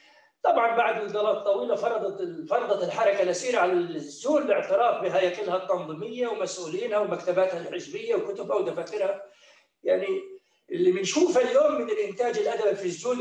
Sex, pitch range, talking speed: male, 205-290 Hz, 125 wpm